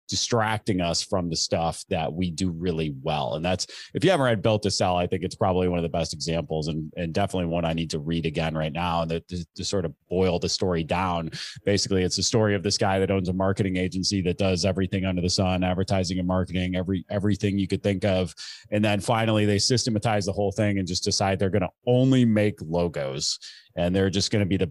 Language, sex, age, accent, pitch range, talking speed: English, male, 30-49, American, 90-115 Hz, 235 wpm